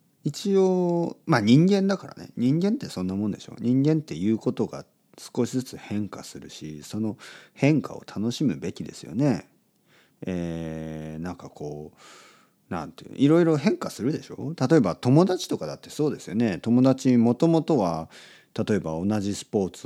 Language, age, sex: Japanese, 40-59, male